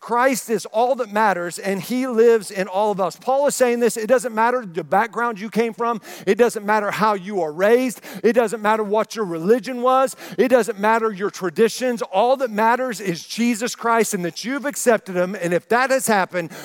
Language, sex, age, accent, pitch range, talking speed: English, male, 50-69, American, 190-235 Hz, 215 wpm